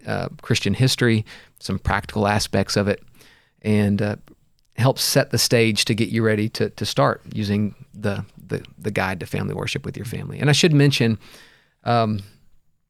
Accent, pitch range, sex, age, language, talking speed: American, 105-120 Hz, male, 40-59, English, 170 wpm